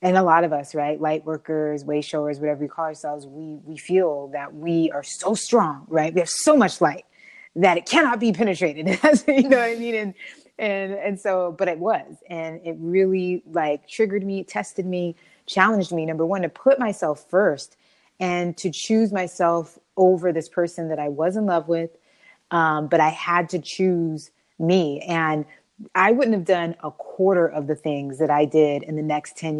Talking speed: 200 wpm